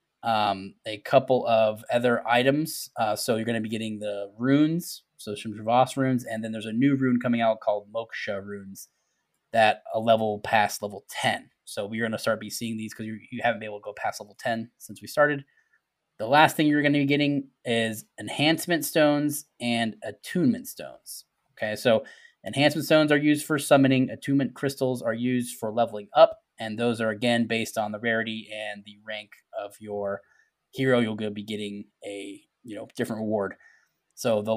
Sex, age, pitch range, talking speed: male, 10-29, 110-135 Hz, 195 wpm